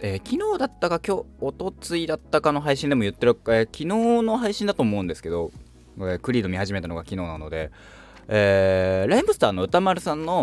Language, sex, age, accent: Japanese, male, 20-39, native